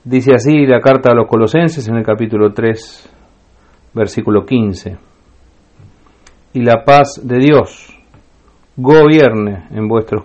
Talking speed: 125 wpm